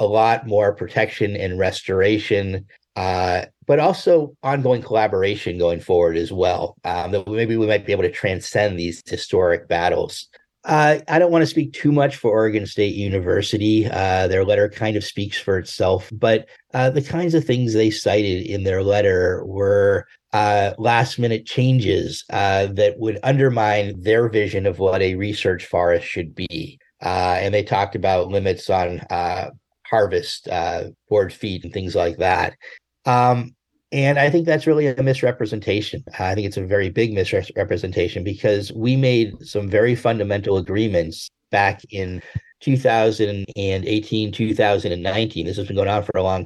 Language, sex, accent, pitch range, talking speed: English, male, American, 100-130 Hz, 160 wpm